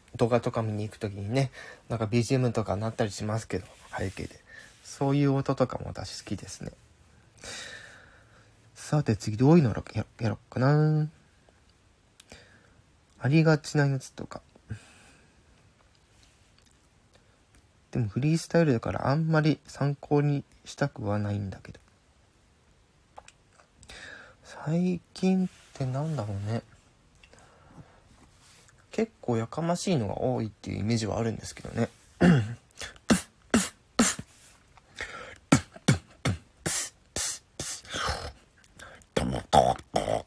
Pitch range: 105-140 Hz